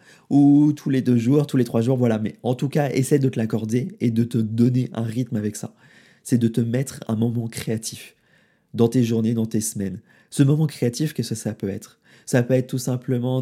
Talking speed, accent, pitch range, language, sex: 235 wpm, French, 115-135 Hz, French, male